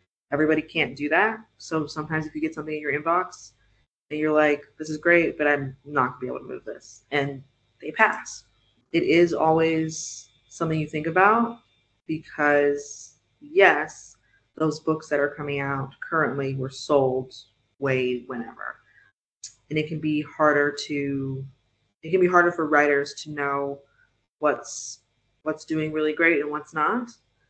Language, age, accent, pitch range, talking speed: English, 20-39, American, 135-170 Hz, 160 wpm